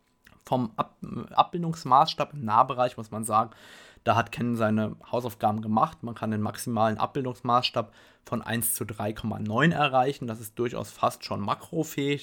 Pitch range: 110-130 Hz